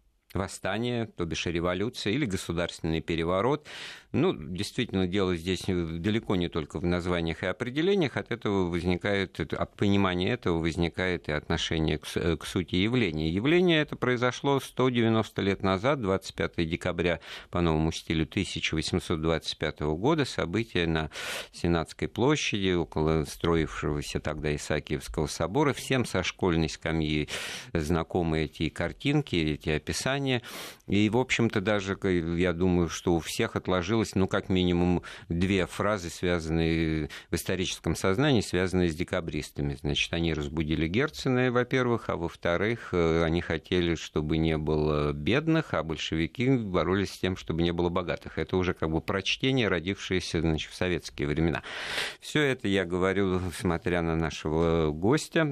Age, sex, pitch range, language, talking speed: 50-69, male, 80-105 Hz, Russian, 130 wpm